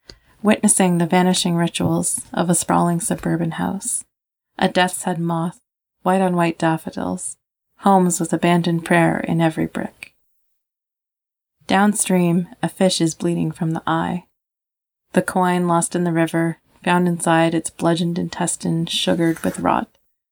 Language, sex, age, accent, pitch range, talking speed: English, female, 20-39, American, 165-190 Hz, 135 wpm